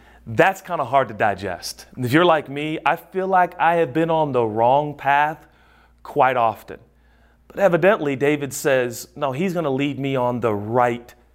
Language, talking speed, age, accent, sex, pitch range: English, 185 wpm, 30-49, American, male, 120-155 Hz